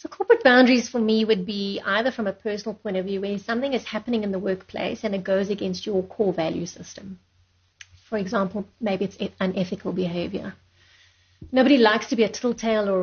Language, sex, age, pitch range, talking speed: English, female, 30-49, 180-220 Hz, 195 wpm